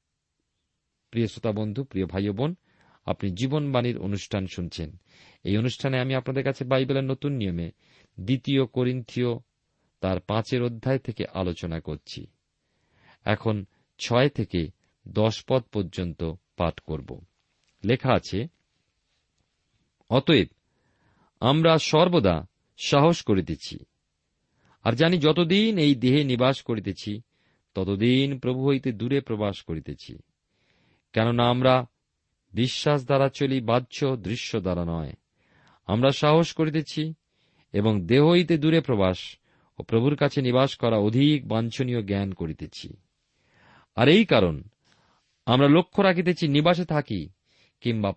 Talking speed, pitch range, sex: 110 wpm, 100-140 Hz, male